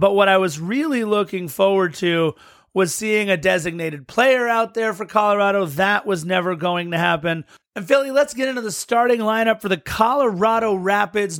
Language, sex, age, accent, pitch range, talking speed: English, male, 30-49, American, 180-220 Hz, 185 wpm